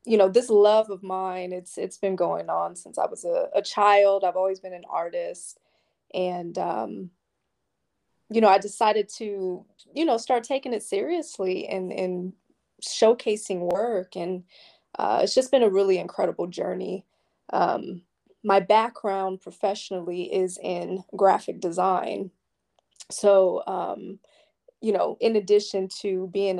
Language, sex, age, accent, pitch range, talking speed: English, female, 20-39, American, 185-210 Hz, 145 wpm